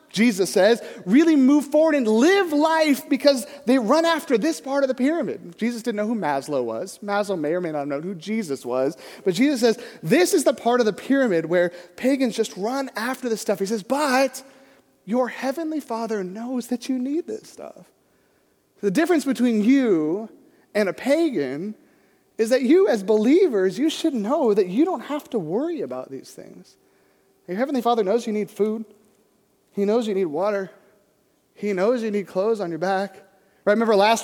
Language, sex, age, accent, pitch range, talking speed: English, male, 30-49, American, 210-290 Hz, 190 wpm